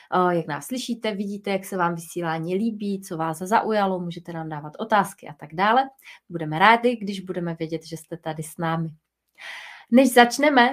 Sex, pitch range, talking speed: female, 180-225 Hz, 175 wpm